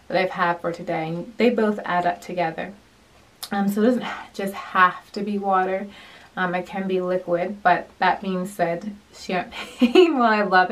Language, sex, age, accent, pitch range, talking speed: English, female, 20-39, American, 185-240 Hz, 180 wpm